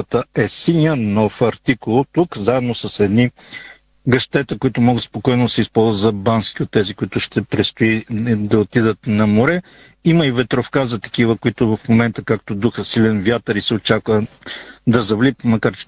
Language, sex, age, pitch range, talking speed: Bulgarian, male, 50-69, 115-140 Hz, 170 wpm